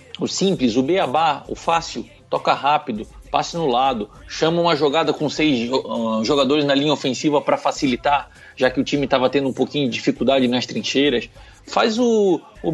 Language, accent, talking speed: Portuguese, Brazilian, 175 wpm